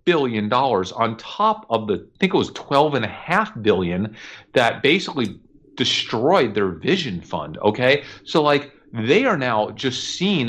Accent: American